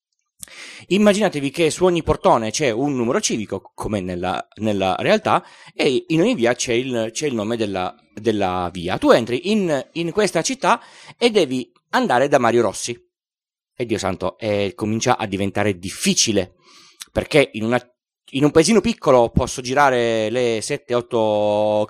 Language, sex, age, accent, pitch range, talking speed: Italian, male, 30-49, native, 110-160 Hz, 150 wpm